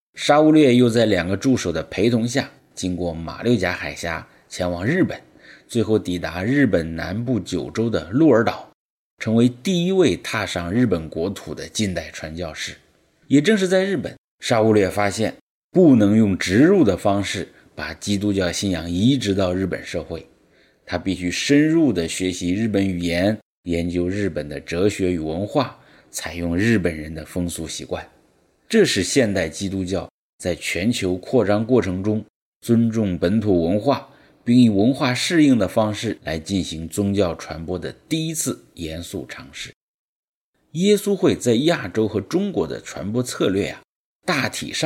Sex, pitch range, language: male, 90-125 Hz, English